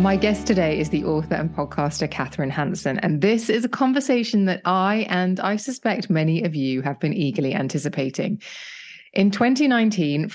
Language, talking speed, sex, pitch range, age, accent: English, 170 wpm, female, 150-195 Hz, 20-39, British